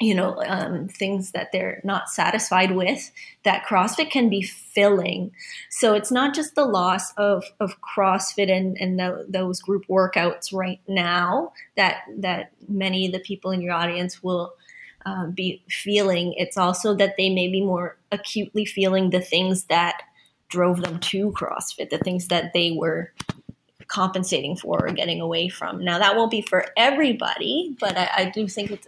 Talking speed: 170 wpm